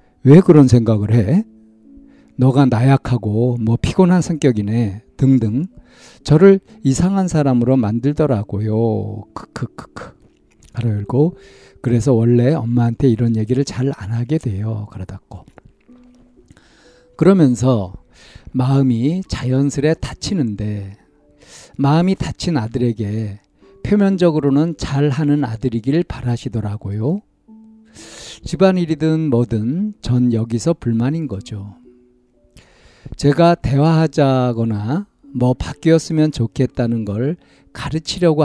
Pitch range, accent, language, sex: 115-155 Hz, native, Korean, male